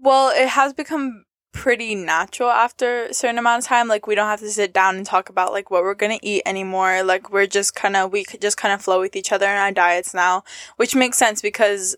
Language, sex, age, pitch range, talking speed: English, female, 10-29, 190-235 Hz, 250 wpm